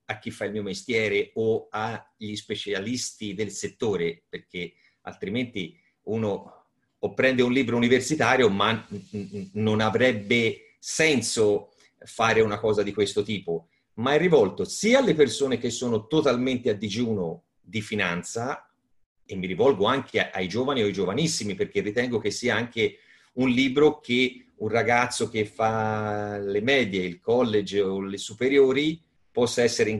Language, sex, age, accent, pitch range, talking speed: Italian, male, 40-59, native, 105-150 Hz, 145 wpm